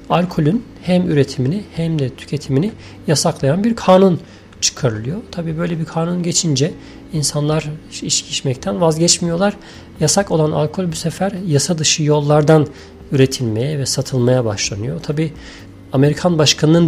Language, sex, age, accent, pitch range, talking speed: Turkish, male, 40-59, native, 120-150 Hz, 120 wpm